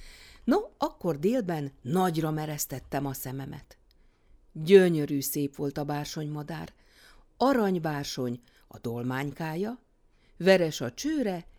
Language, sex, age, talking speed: Hungarian, female, 50-69, 95 wpm